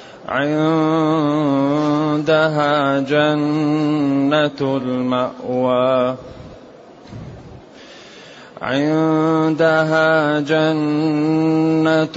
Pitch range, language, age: 150-160 Hz, Arabic, 30-49